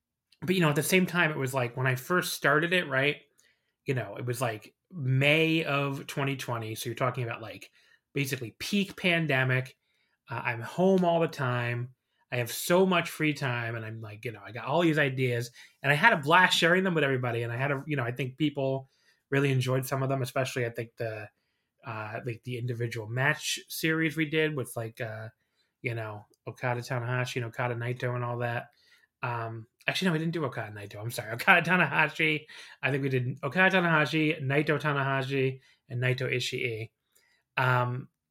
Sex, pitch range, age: male, 120-155 Hz, 20-39